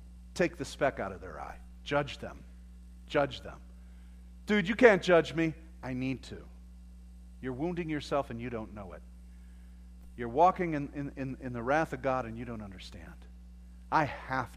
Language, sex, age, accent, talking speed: English, male, 50-69, American, 175 wpm